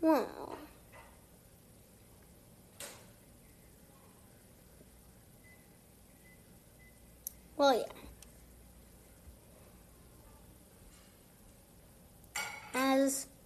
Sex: female